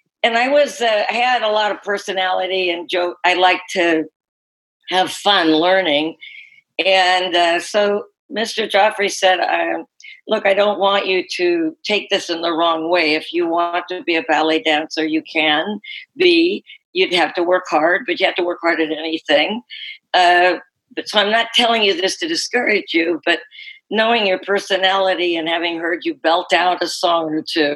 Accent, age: American, 60-79